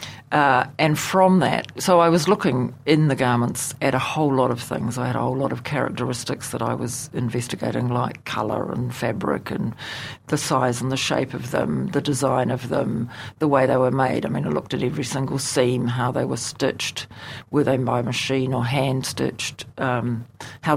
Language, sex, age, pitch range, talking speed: English, female, 50-69, 125-150 Hz, 195 wpm